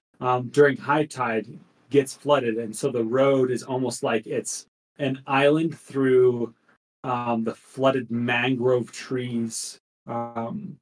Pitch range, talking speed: 115-140 Hz, 130 wpm